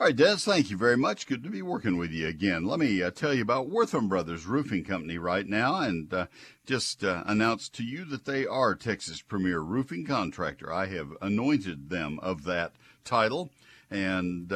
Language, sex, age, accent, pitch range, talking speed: English, male, 60-79, American, 85-105 Hz, 200 wpm